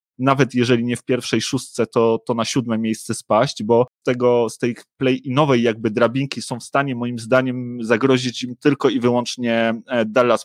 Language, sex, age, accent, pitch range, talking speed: Polish, male, 30-49, native, 115-130 Hz, 185 wpm